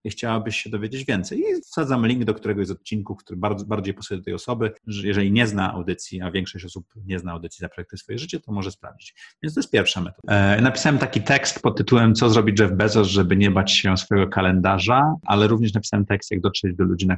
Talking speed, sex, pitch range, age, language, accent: 225 wpm, male, 90-110 Hz, 30-49, Polish, native